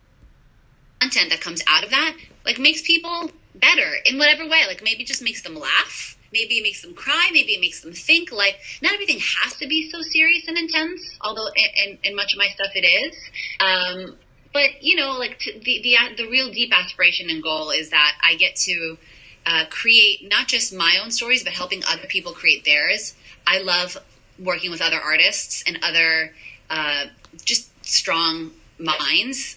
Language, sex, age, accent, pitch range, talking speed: English, female, 20-39, American, 165-240 Hz, 185 wpm